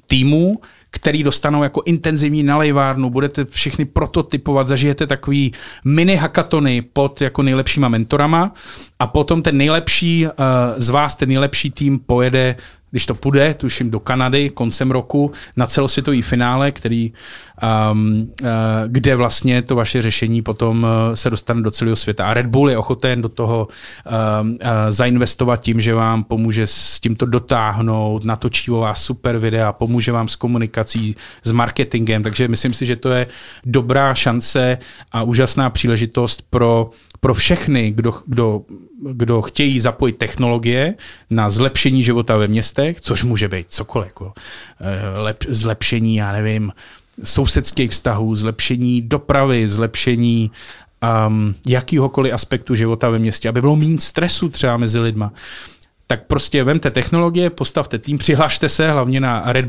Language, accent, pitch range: Czech, native, 115-140 Hz